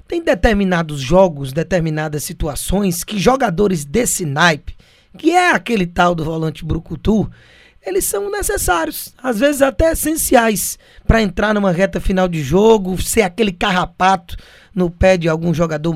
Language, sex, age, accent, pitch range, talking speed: Portuguese, male, 20-39, Brazilian, 170-230 Hz, 145 wpm